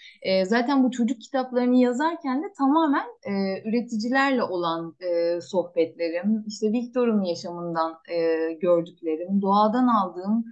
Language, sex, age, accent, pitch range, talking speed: Turkish, female, 30-49, native, 185-250 Hz, 110 wpm